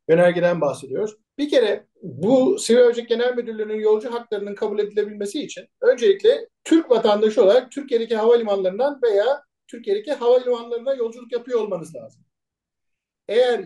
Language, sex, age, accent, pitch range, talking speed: Turkish, male, 50-69, native, 205-285 Hz, 125 wpm